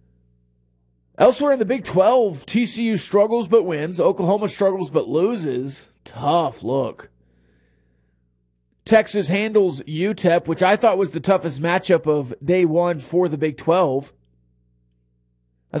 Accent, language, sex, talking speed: American, English, male, 125 wpm